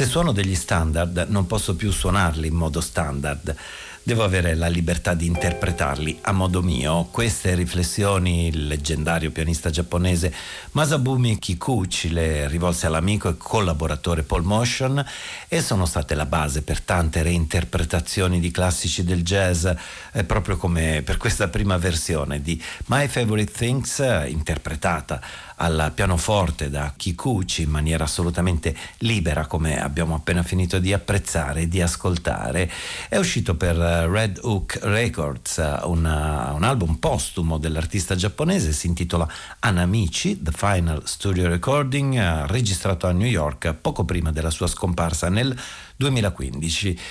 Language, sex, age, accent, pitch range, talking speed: Italian, male, 50-69, native, 80-100 Hz, 130 wpm